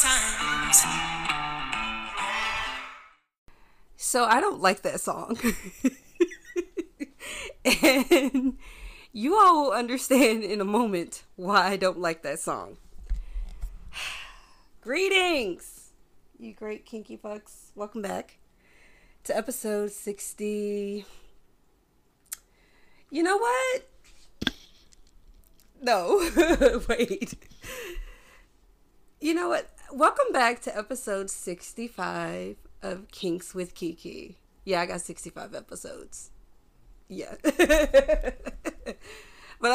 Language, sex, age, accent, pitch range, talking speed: English, female, 30-49, American, 200-295 Hz, 80 wpm